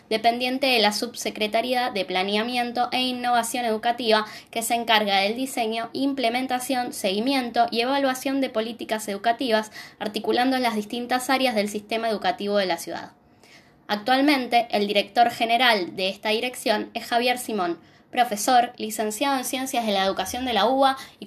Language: Spanish